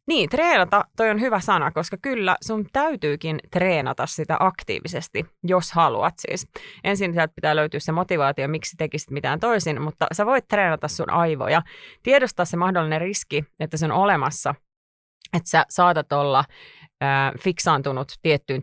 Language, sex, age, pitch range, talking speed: Finnish, female, 30-49, 145-185 Hz, 150 wpm